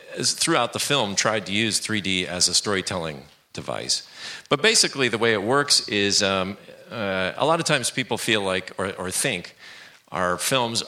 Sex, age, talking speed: male, 40-59, 175 wpm